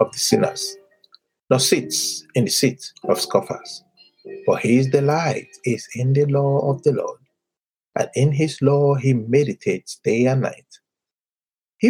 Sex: male